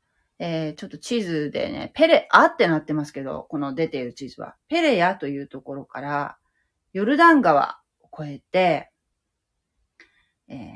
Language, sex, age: Japanese, female, 40-59